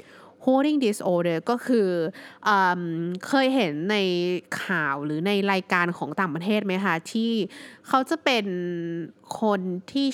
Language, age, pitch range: Thai, 20-39, 170-225 Hz